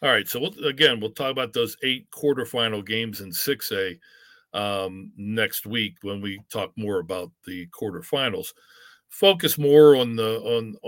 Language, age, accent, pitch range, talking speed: English, 50-69, American, 110-140 Hz, 150 wpm